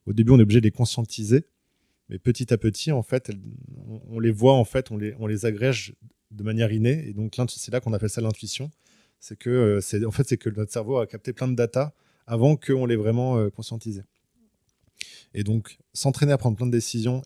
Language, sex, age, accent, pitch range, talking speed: French, male, 20-39, French, 110-130 Hz, 215 wpm